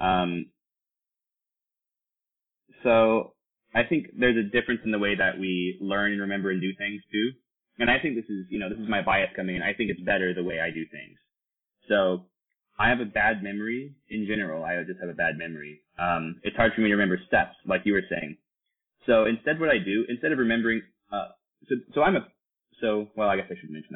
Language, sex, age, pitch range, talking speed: English, male, 20-39, 90-110 Hz, 225 wpm